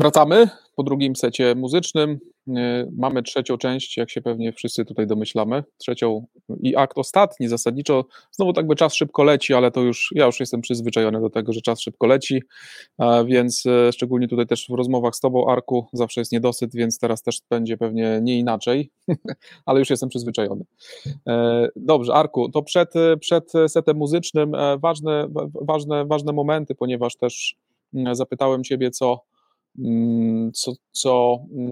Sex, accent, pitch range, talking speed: male, native, 120-140 Hz, 150 wpm